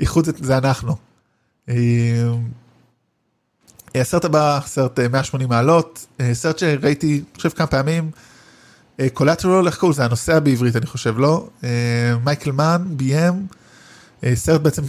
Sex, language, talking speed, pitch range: male, Hebrew, 115 wpm, 125-155 Hz